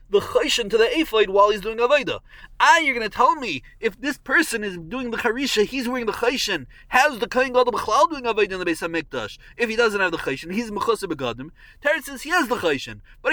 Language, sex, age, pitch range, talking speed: English, male, 30-49, 170-265 Hz, 245 wpm